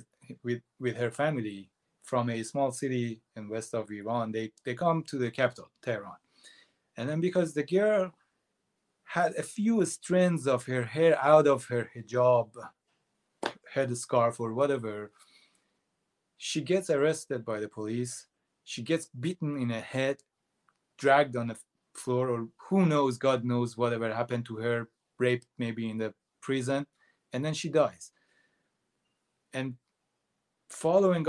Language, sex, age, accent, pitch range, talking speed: English, male, 30-49, Japanese, 120-160 Hz, 140 wpm